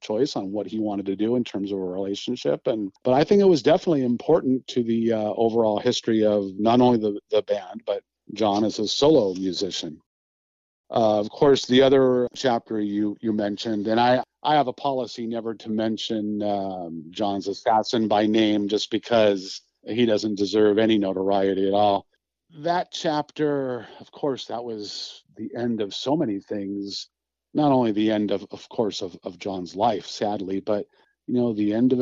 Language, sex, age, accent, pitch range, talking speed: English, male, 50-69, American, 100-125 Hz, 185 wpm